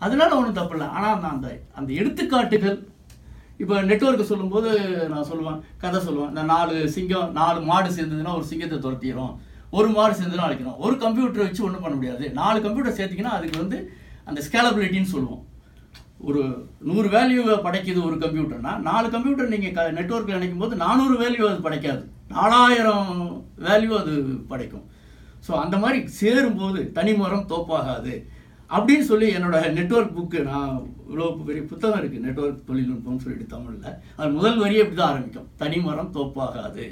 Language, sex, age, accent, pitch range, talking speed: Tamil, male, 60-79, native, 155-225 Hz, 145 wpm